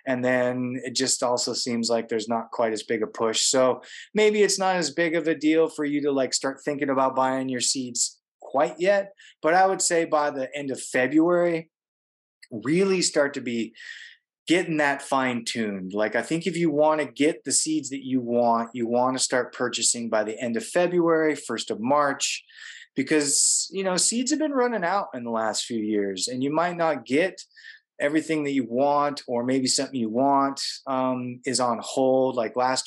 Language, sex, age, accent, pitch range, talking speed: English, male, 20-39, American, 120-160 Hz, 205 wpm